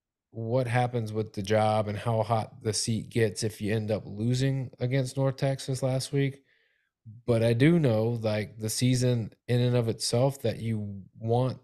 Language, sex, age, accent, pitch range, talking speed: English, male, 20-39, American, 110-130 Hz, 180 wpm